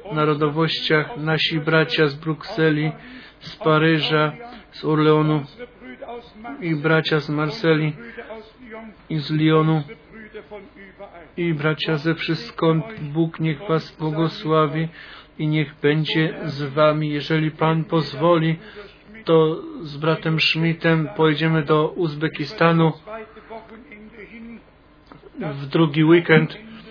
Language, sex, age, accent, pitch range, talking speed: Polish, male, 40-59, native, 155-170 Hz, 95 wpm